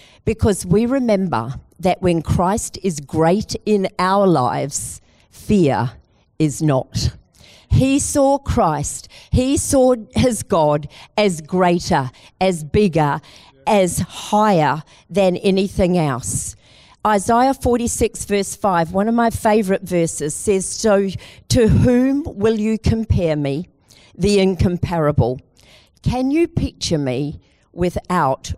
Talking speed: 115 wpm